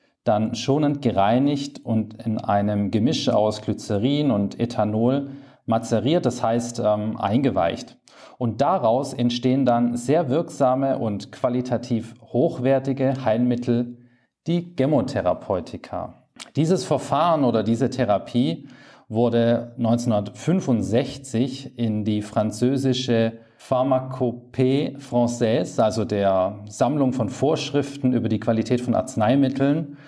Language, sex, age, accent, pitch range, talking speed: German, male, 40-59, German, 115-135 Hz, 100 wpm